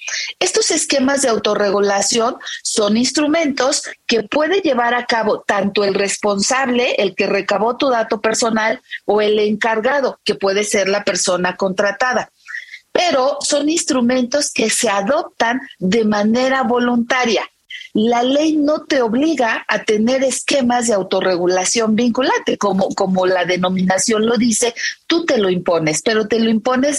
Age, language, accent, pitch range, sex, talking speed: 40-59, Spanish, Mexican, 205-260 Hz, female, 140 wpm